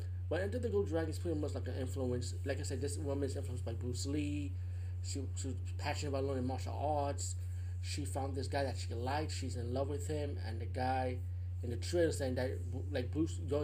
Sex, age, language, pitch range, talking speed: male, 20-39, English, 90-95 Hz, 215 wpm